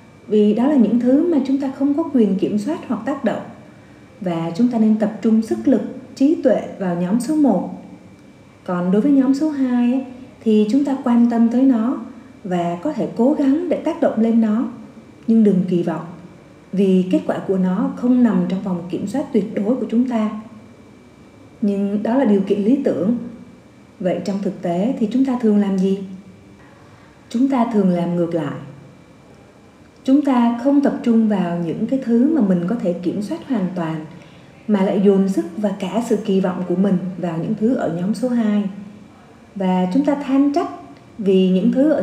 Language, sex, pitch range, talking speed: Vietnamese, female, 190-250 Hz, 200 wpm